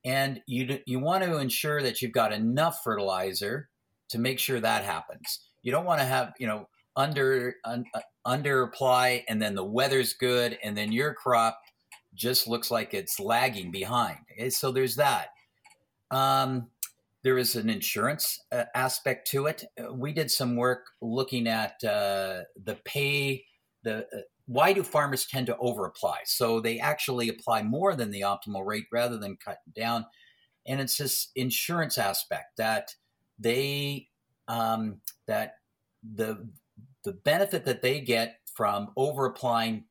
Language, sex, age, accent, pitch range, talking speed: English, male, 50-69, American, 115-135 Hz, 155 wpm